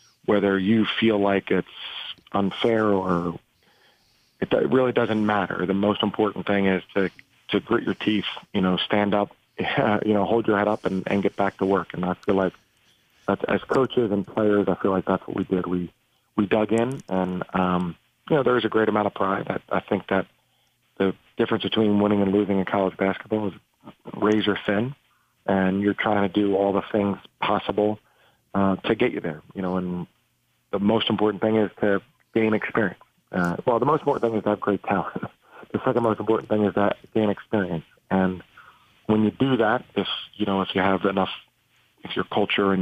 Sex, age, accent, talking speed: male, 40-59, American, 205 wpm